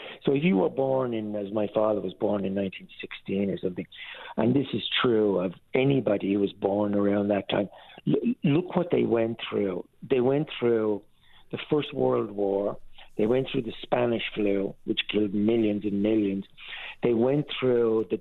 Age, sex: 60-79, male